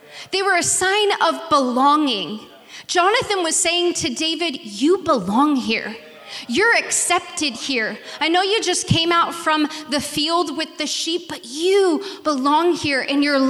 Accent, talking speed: American, 155 wpm